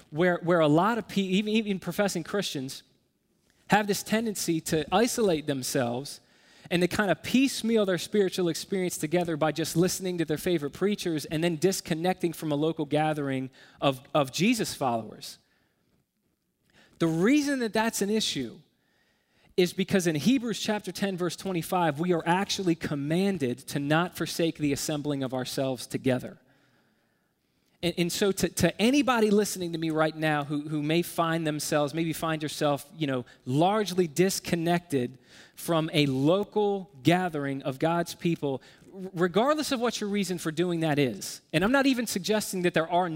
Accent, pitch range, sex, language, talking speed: American, 155-195 Hz, male, English, 160 wpm